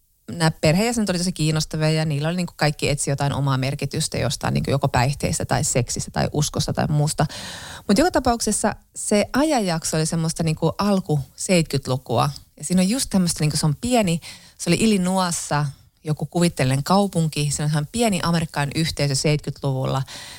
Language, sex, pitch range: Finnish, female, 145-175 Hz